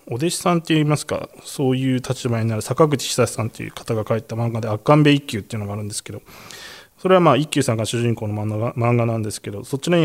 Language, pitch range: Japanese, 110-145 Hz